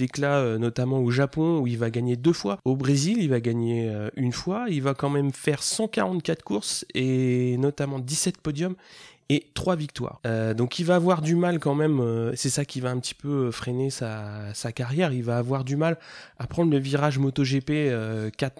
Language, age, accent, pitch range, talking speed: French, 20-39, French, 115-140 Hz, 205 wpm